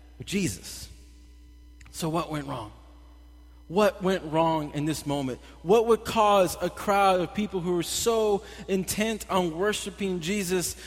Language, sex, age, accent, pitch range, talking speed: English, male, 20-39, American, 160-215 Hz, 140 wpm